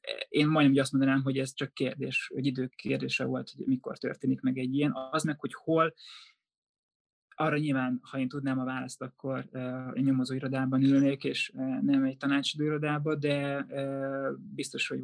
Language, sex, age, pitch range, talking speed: Hungarian, male, 20-39, 130-140 Hz, 155 wpm